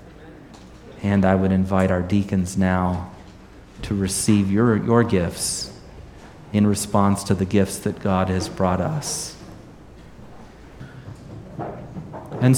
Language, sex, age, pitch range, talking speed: English, male, 30-49, 95-110 Hz, 110 wpm